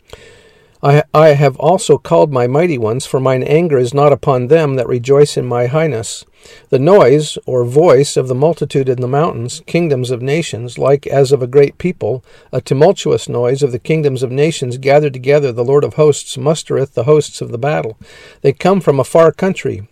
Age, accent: 50-69, American